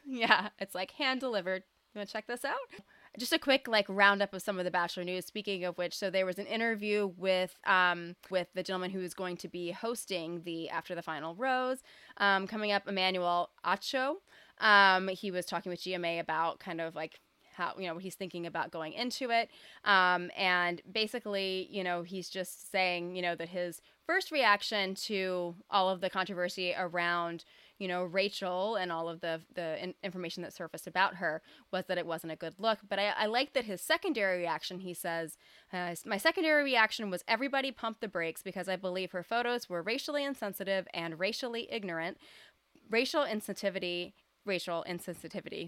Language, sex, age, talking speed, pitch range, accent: English, female, 20-39, 190 wpm, 180-225 Hz, American